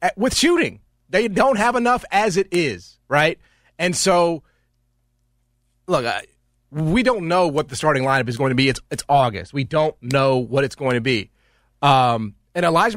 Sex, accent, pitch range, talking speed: male, American, 125-160 Hz, 180 wpm